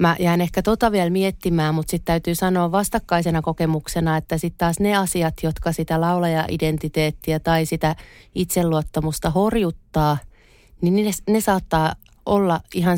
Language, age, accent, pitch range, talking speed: Finnish, 30-49, native, 155-180 Hz, 140 wpm